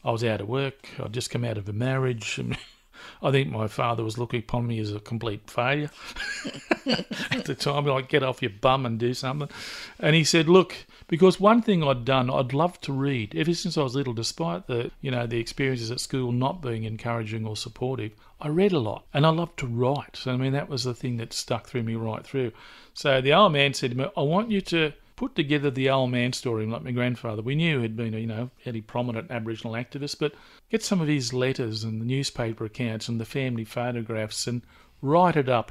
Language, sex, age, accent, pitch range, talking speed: English, male, 50-69, Australian, 115-140 Hz, 225 wpm